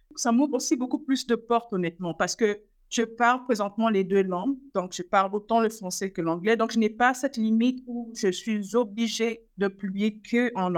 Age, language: 50-69, French